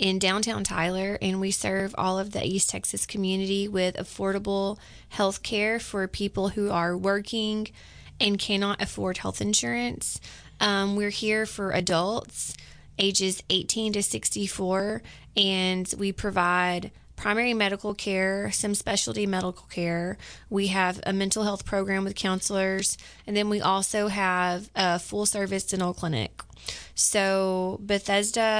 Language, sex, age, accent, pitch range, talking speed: English, female, 20-39, American, 185-205 Hz, 130 wpm